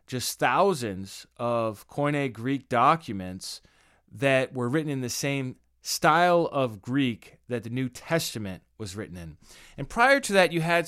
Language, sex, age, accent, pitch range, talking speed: English, male, 30-49, American, 120-155 Hz, 155 wpm